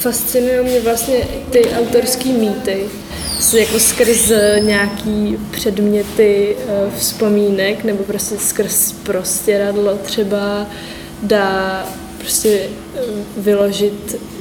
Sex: female